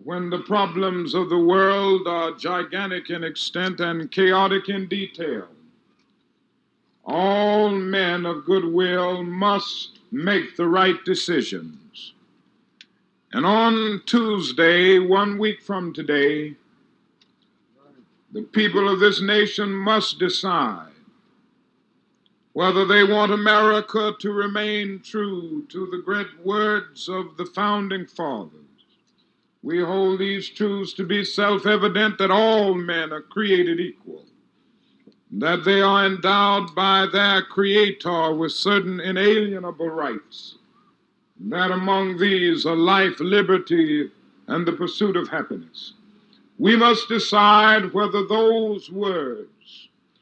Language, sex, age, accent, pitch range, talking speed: English, male, 60-79, American, 180-210 Hz, 110 wpm